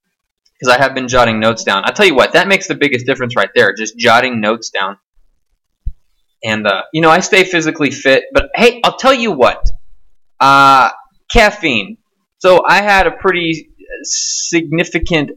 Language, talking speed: English, 170 wpm